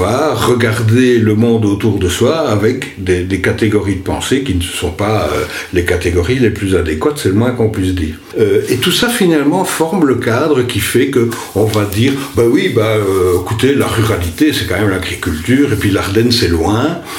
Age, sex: 60-79, male